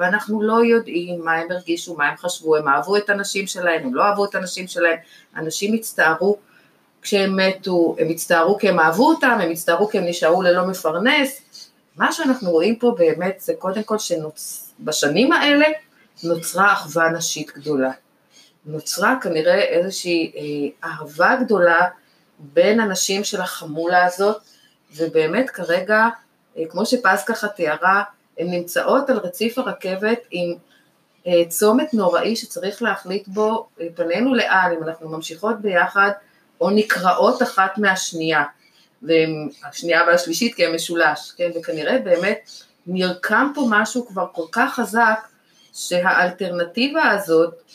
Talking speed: 130 wpm